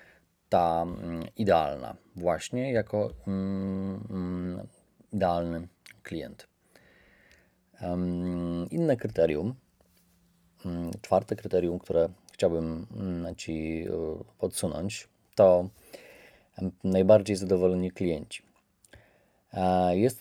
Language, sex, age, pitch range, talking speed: Polish, male, 30-49, 85-100 Hz, 55 wpm